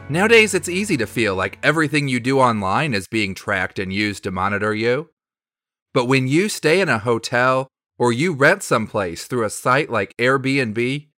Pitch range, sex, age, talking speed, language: 110-165 Hz, male, 30-49, 180 wpm, English